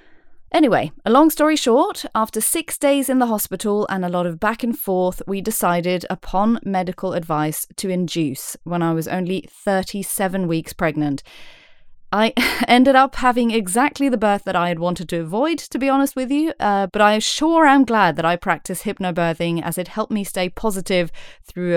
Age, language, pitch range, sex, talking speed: 30-49, English, 170-235 Hz, female, 185 wpm